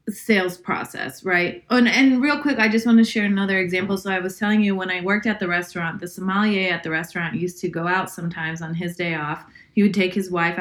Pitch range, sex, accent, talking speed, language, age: 180-220 Hz, female, American, 250 wpm, English, 20-39